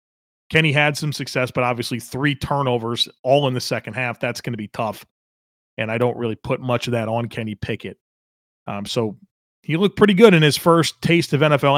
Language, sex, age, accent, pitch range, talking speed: English, male, 30-49, American, 125-170 Hz, 210 wpm